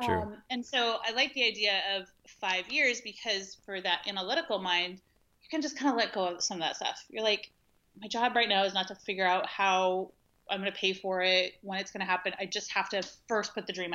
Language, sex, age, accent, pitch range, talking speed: English, female, 30-49, American, 185-220 Hz, 250 wpm